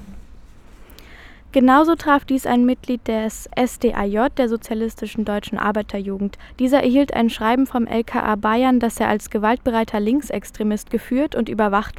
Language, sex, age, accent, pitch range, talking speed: German, female, 10-29, German, 210-250 Hz, 130 wpm